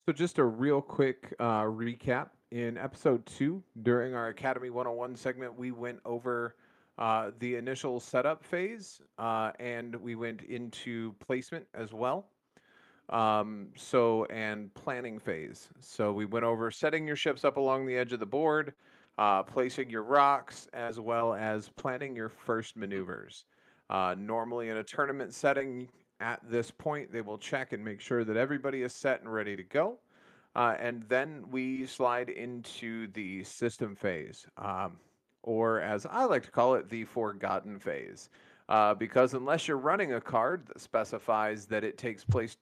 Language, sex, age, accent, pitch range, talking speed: English, male, 30-49, American, 110-130 Hz, 165 wpm